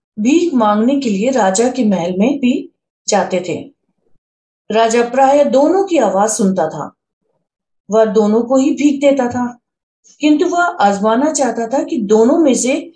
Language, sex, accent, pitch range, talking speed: Hindi, female, native, 215-280 Hz, 160 wpm